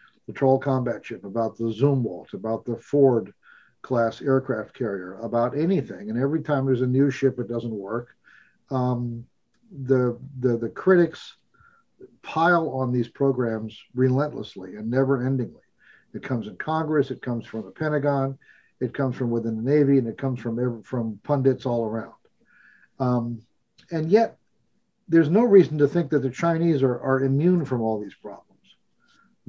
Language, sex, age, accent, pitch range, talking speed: English, male, 50-69, American, 120-145 Hz, 155 wpm